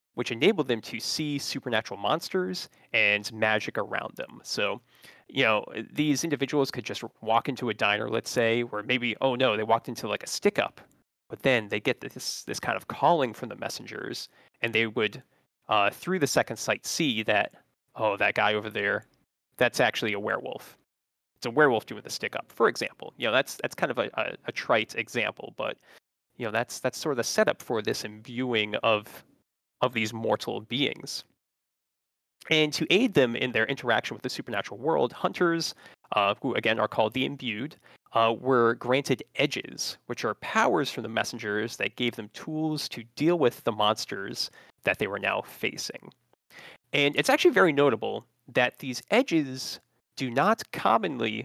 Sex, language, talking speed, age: male, English, 180 wpm, 20-39